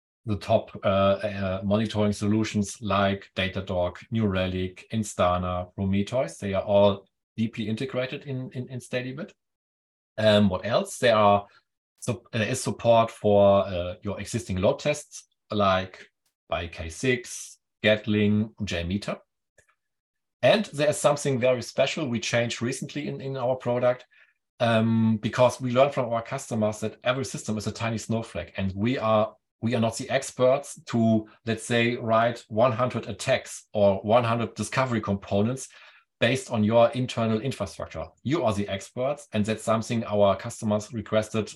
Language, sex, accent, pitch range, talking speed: English, male, German, 100-120 Hz, 145 wpm